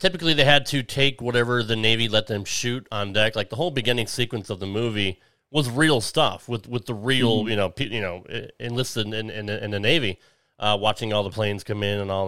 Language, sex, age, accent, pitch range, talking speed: English, male, 30-49, American, 105-135 Hz, 235 wpm